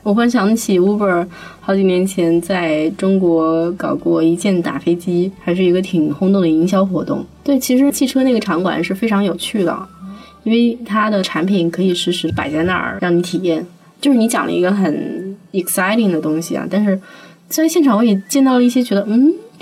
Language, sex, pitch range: Chinese, female, 170-210 Hz